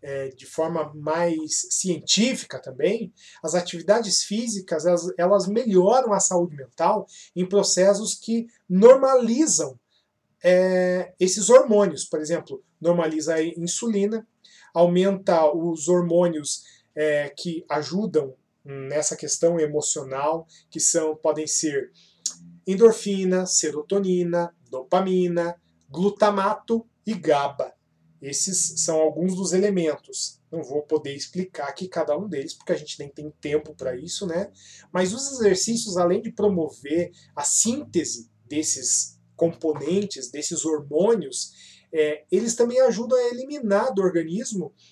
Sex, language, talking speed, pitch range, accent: male, Portuguese, 110 wpm, 155-210 Hz, Brazilian